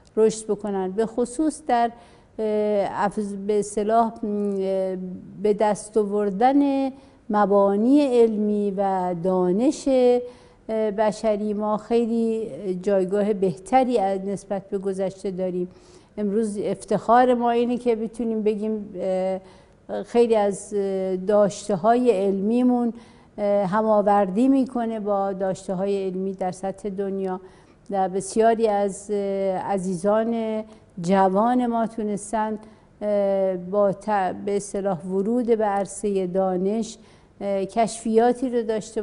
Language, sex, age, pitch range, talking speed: Persian, female, 60-79, 200-235 Hz, 95 wpm